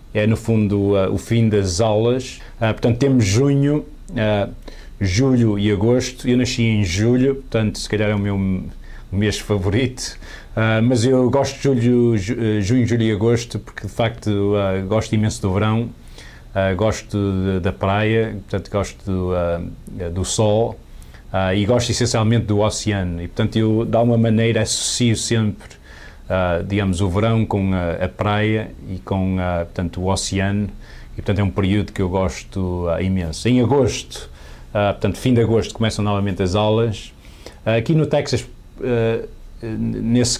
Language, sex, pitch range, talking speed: English, male, 95-115 Hz, 165 wpm